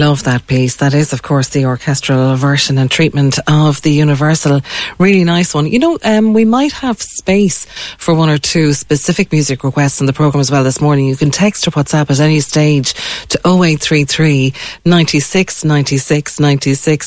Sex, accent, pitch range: female, Irish, 145-170 Hz